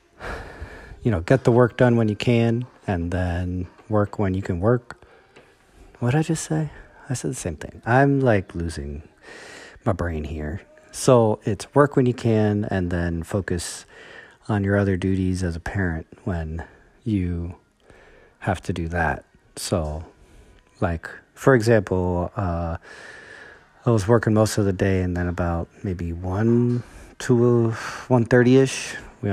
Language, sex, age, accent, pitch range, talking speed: English, male, 40-59, American, 85-115 Hz, 155 wpm